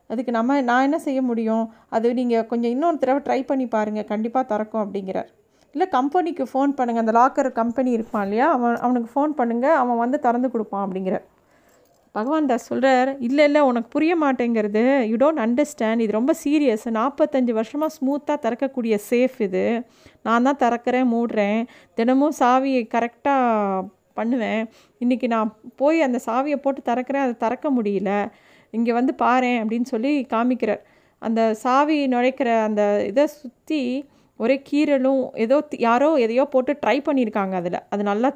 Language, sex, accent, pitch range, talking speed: Tamil, female, native, 225-275 Hz, 150 wpm